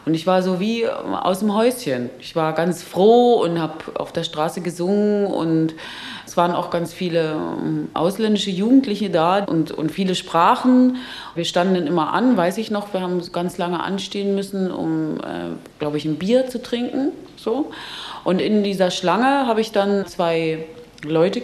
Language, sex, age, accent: German, female, 30-49, German